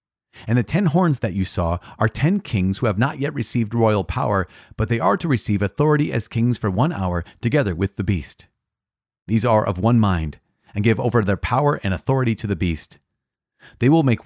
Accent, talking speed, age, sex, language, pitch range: American, 210 wpm, 40-59, male, English, 95-130 Hz